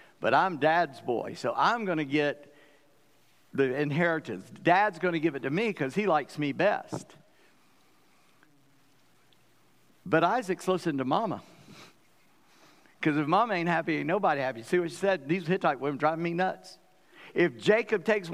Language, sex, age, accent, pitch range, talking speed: English, male, 60-79, American, 150-200 Hz, 165 wpm